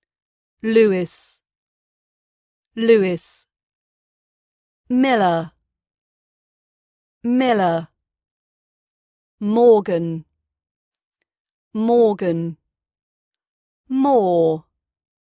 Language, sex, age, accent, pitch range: English, female, 40-59, British, 165-230 Hz